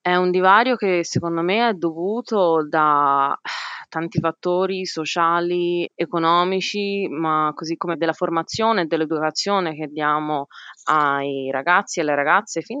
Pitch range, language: 155-190 Hz, Italian